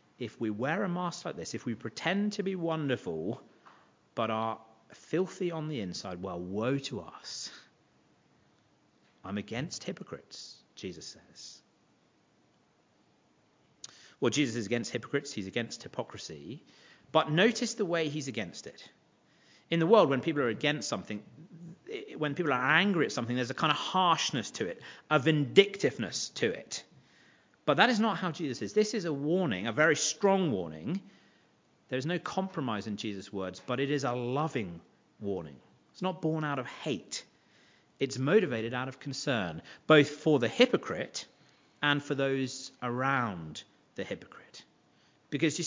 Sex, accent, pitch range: male, British, 115-170 Hz